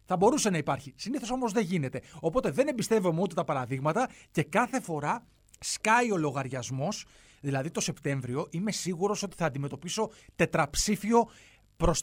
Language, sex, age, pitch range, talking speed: Greek, male, 30-49, 150-200 Hz, 150 wpm